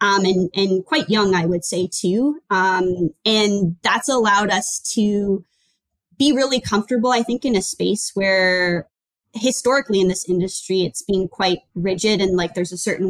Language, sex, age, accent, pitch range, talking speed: English, female, 20-39, American, 185-225 Hz, 170 wpm